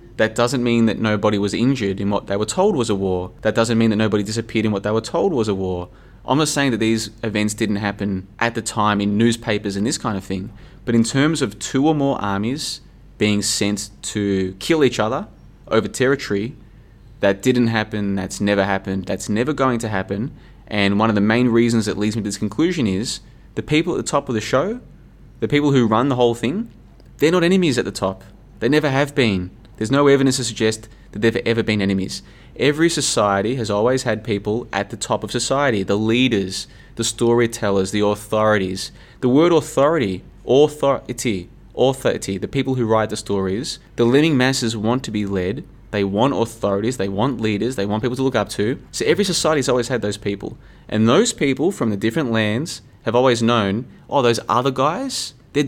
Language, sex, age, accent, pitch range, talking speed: English, male, 20-39, Australian, 105-130 Hz, 210 wpm